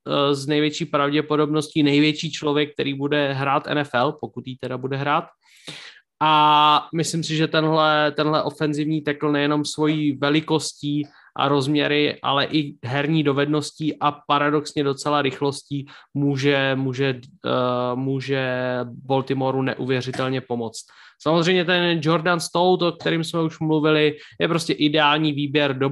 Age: 20-39